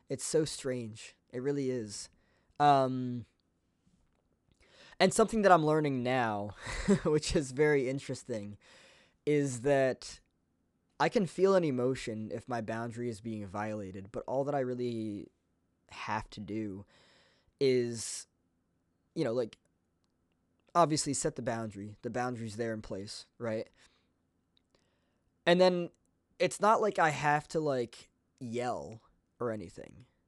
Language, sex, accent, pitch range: English, male, American, 95-135 Hz